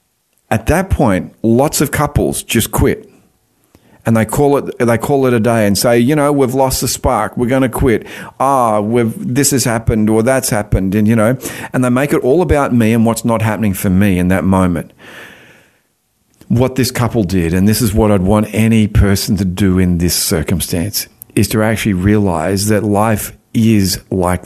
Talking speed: 200 wpm